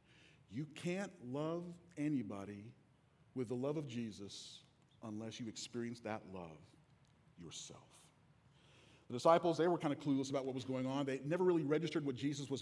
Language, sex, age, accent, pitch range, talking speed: English, male, 40-59, American, 120-155 Hz, 160 wpm